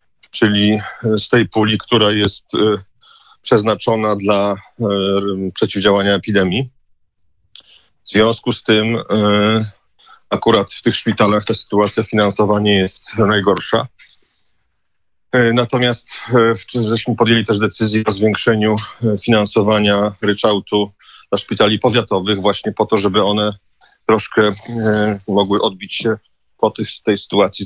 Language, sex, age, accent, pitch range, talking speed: Polish, male, 40-59, native, 100-110 Hz, 105 wpm